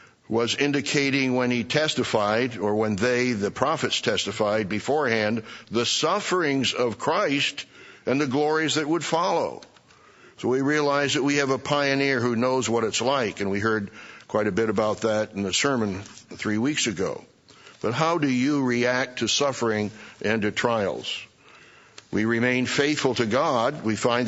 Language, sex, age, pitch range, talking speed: English, male, 60-79, 110-135 Hz, 165 wpm